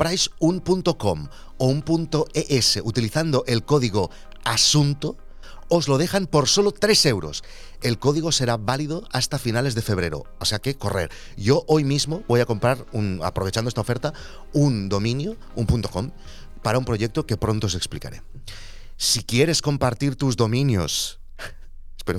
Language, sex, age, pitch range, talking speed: Spanish, male, 30-49, 105-145 Hz, 145 wpm